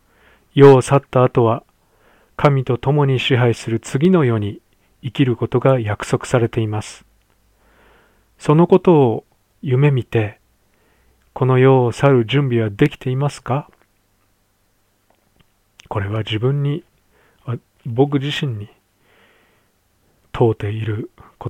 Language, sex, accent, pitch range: Japanese, male, native, 100-130 Hz